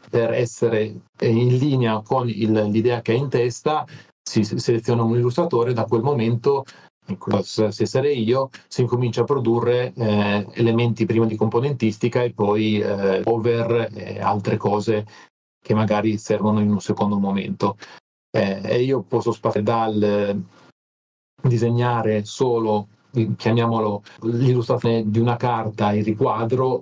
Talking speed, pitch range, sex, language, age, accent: 135 wpm, 105-120 Hz, male, Italian, 40-59, native